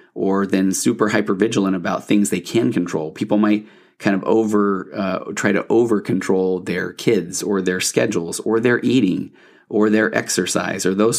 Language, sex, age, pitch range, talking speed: English, male, 30-49, 95-110 Hz, 170 wpm